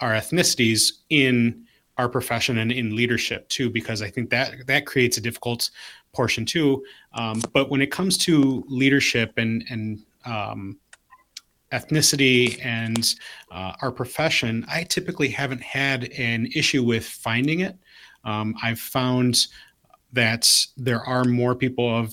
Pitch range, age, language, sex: 110-125 Hz, 30-49, English, male